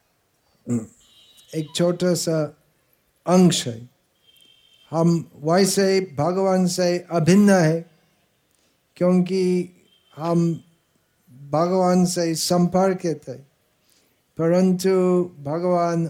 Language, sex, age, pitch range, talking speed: Hindi, male, 60-79, 145-190 Hz, 75 wpm